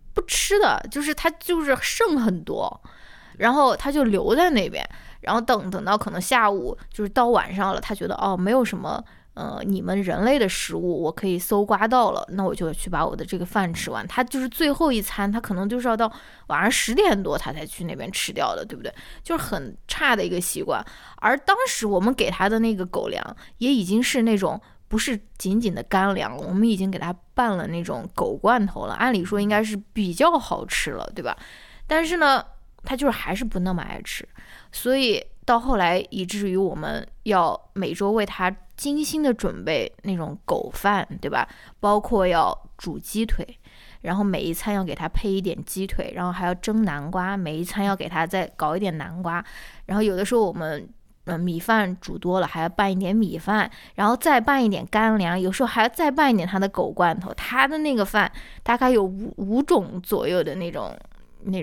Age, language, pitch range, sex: 20-39, Chinese, 185-245 Hz, female